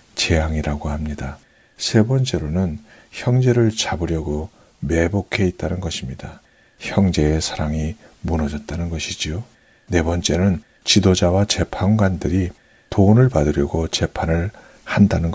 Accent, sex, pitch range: native, male, 80-100 Hz